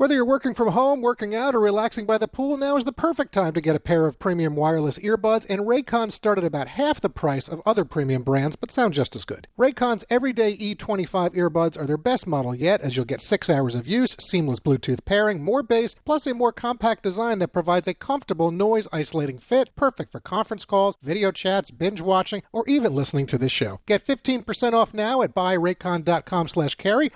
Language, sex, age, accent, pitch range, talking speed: English, male, 40-59, American, 150-230 Hz, 205 wpm